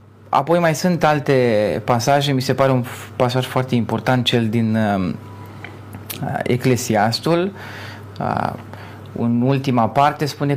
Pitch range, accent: 110-145 Hz, native